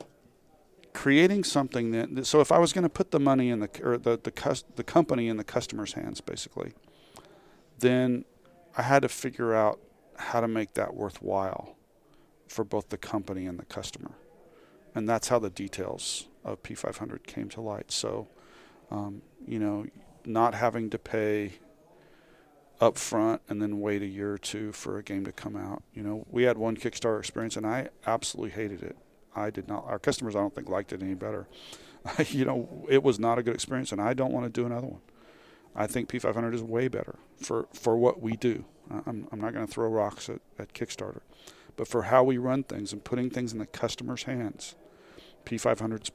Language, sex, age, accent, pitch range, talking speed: English, male, 40-59, American, 105-125 Hz, 195 wpm